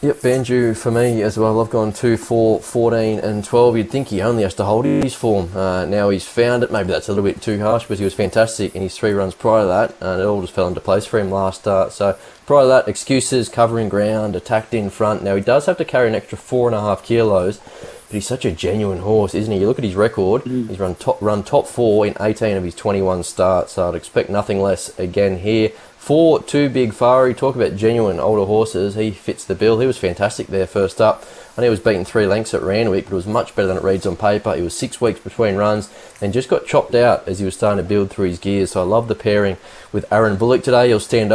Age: 20-39